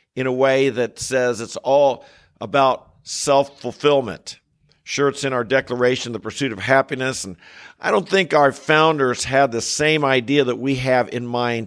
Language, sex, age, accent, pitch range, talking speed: English, male, 50-69, American, 130-160 Hz, 170 wpm